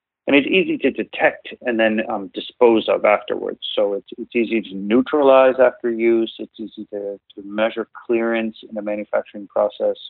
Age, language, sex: 40-59, English, male